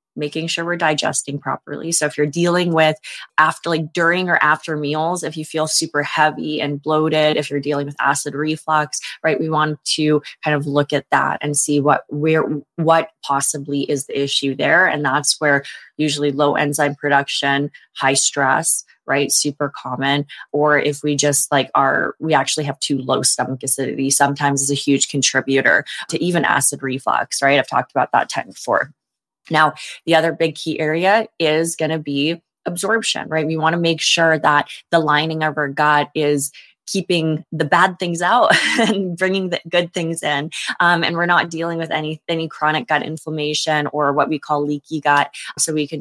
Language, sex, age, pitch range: English, female, 20-39, 145-160 Hz